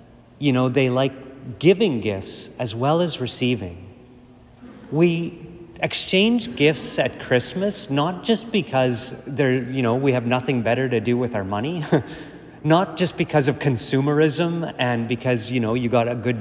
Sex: male